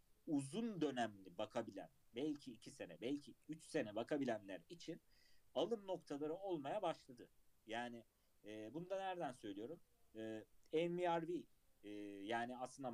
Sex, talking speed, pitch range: male, 120 wpm, 120-170 Hz